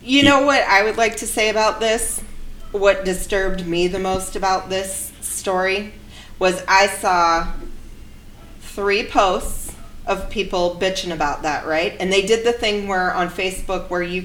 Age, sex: 30-49, female